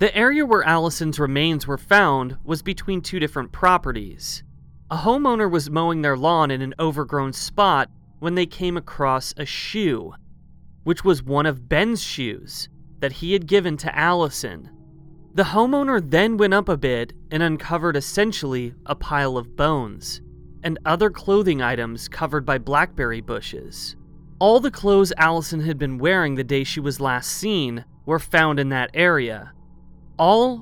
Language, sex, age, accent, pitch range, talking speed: English, male, 30-49, American, 135-180 Hz, 160 wpm